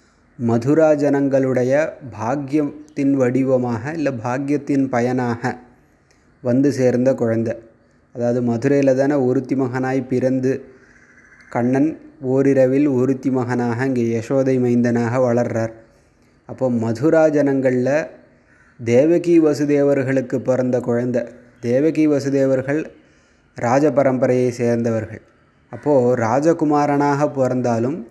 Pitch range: 120-140 Hz